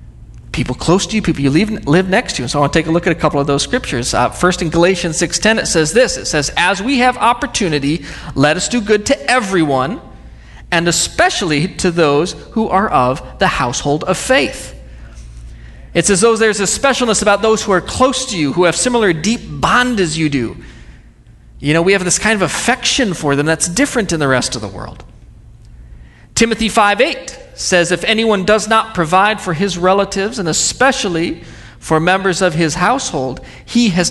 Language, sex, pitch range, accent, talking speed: English, male, 145-205 Hz, American, 195 wpm